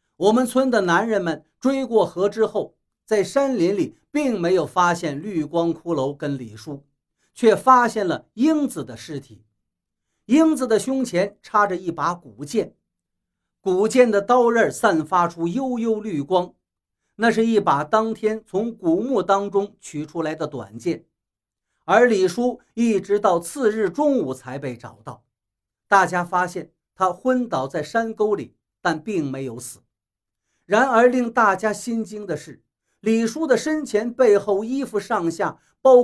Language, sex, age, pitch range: Chinese, male, 50-69, 135-225 Hz